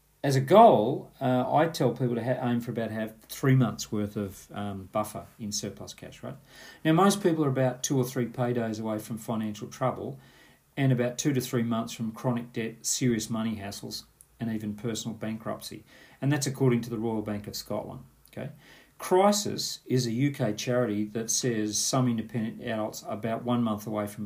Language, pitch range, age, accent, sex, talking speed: English, 110-130 Hz, 40-59, Australian, male, 195 wpm